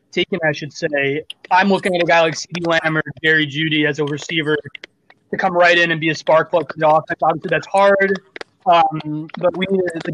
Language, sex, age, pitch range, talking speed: English, male, 20-39, 155-185 Hz, 225 wpm